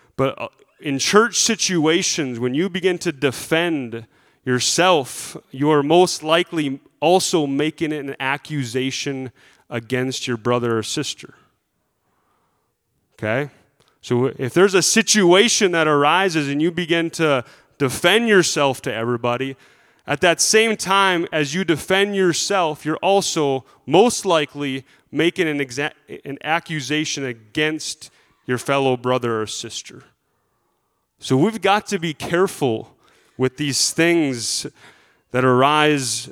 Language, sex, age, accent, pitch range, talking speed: English, male, 30-49, American, 130-180 Hz, 120 wpm